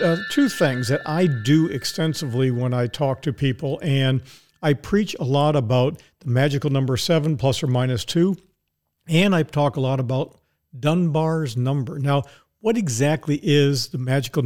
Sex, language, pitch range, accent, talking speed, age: male, English, 130-165 Hz, American, 160 wpm, 50-69